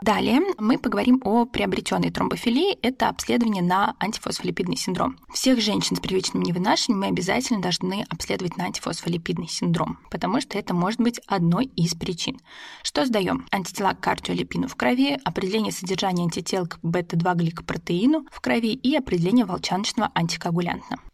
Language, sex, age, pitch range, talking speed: Russian, female, 20-39, 185-255 Hz, 140 wpm